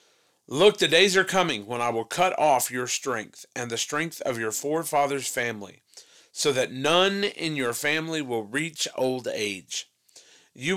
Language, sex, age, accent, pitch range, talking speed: English, male, 40-59, American, 125-165 Hz, 165 wpm